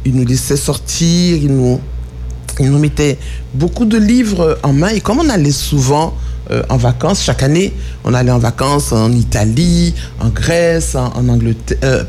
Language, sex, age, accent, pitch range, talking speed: French, male, 60-79, French, 115-155 Hz, 175 wpm